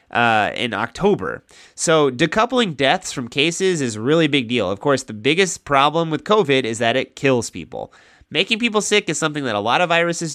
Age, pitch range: 30-49, 115-165 Hz